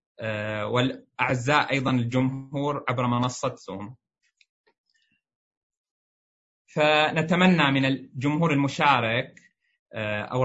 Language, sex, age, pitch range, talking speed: Arabic, male, 20-39, 125-150 Hz, 65 wpm